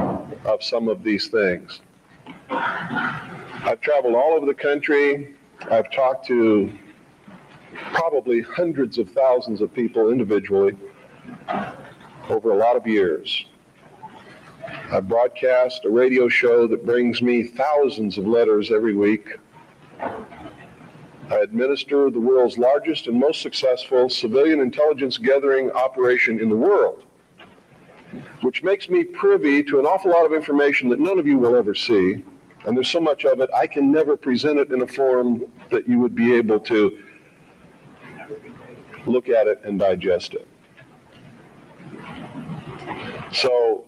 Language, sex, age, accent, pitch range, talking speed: English, male, 50-69, American, 115-160 Hz, 135 wpm